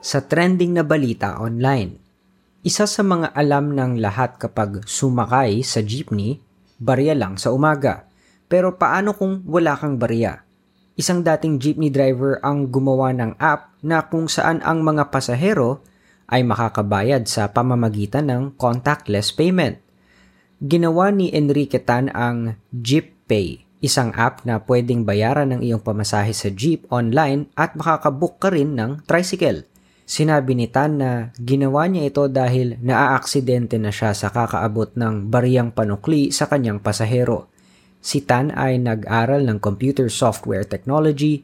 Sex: female